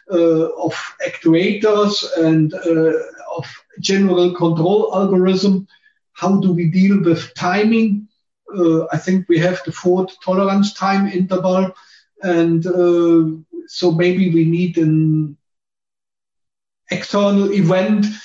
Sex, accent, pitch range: male, German, 165-190 Hz